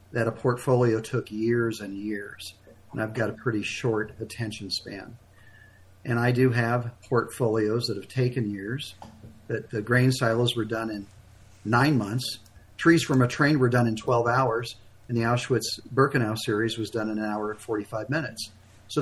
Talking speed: 175 wpm